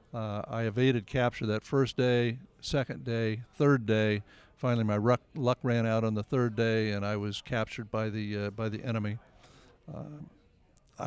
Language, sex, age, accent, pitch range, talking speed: English, male, 50-69, American, 110-125 Hz, 175 wpm